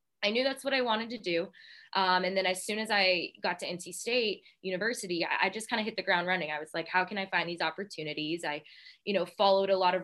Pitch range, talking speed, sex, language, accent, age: 170-205 Hz, 270 wpm, female, English, American, 20-39